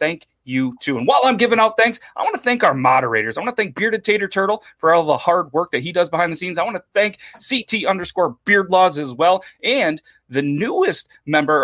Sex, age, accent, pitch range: male, 30-49, American, 150-210 Hz